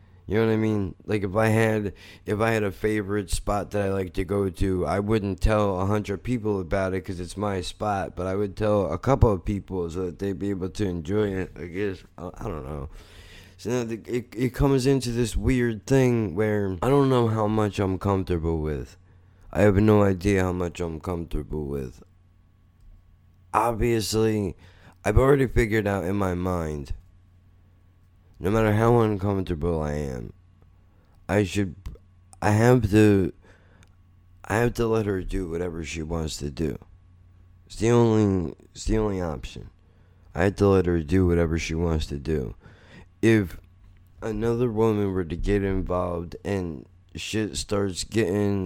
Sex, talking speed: male, 175 wpm